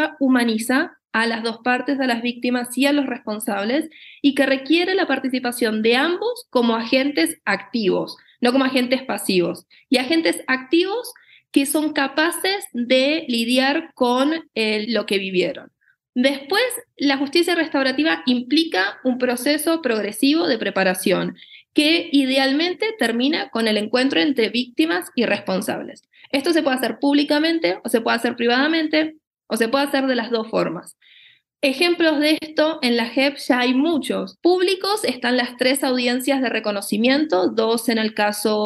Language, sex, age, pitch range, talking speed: English, female, 20-39, 225-300 Hz, 150 wpm